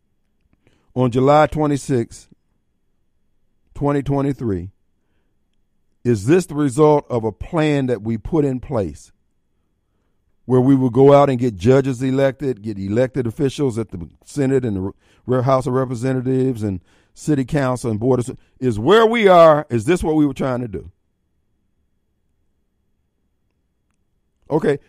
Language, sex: Japanese, male